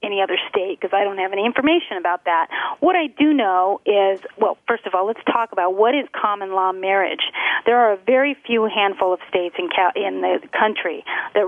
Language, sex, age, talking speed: English, female, 40-59, 215 wpm